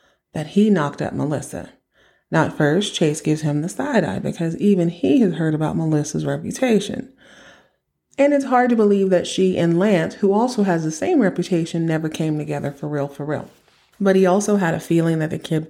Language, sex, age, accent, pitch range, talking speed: English, female, 30-49, American, 155-195 Hz, 205 wpm